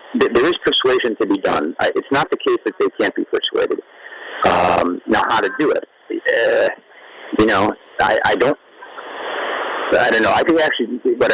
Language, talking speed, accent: English, 180 wpm, American